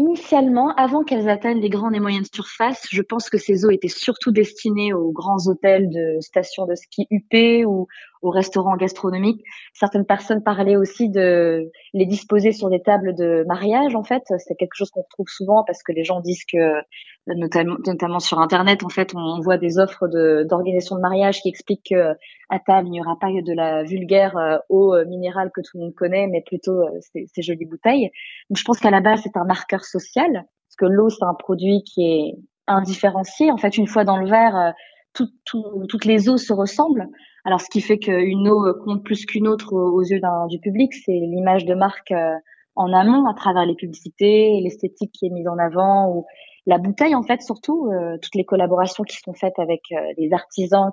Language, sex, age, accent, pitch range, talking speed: French, female, 20-39, French, 180-220 Hz, 200 wpm